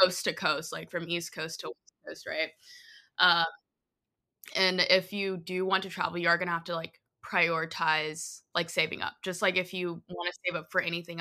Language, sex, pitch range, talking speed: English, female, 170-195 Hz, 215 wpm